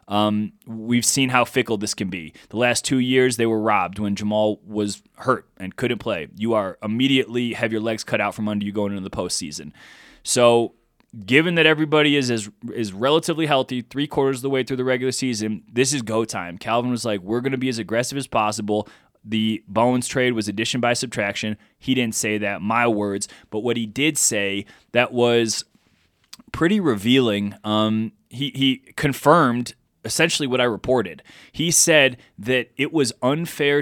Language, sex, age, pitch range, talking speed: English, male, 20-39, 110-140 Hz, 185 wpm